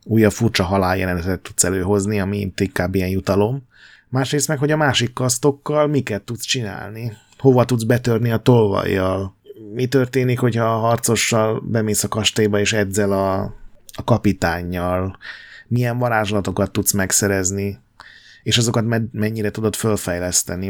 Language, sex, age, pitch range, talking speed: Hungarian, male, 30-49, 100-120 Hz, 130 wpm